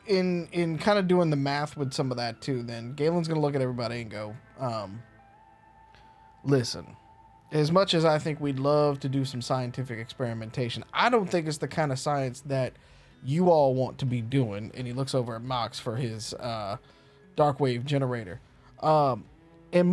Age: 20-39